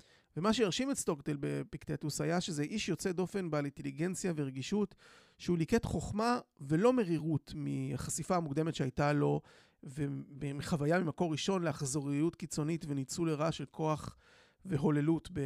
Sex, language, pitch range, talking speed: male, Hebrew, 135-170 Hz, 125 wpm